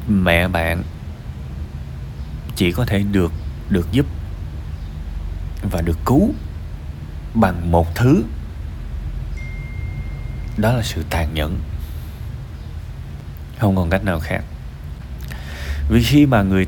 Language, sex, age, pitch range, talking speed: Vietnamese, male, 20-39, 75-110 Hz, 100 wpm